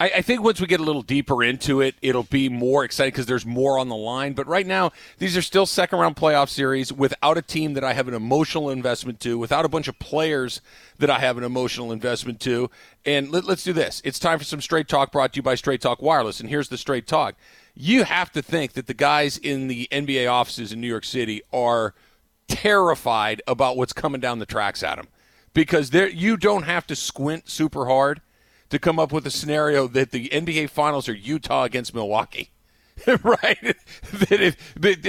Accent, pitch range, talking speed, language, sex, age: American, 130-170 Hz, 210 wpm, English, male, 40-59